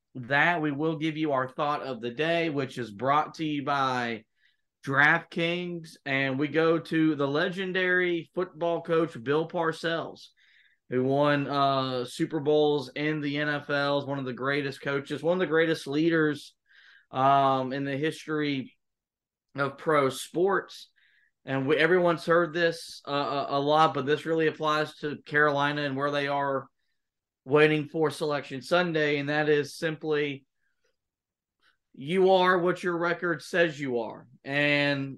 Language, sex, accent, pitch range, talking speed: English, male, American, 135-165 Hz, 145 wpm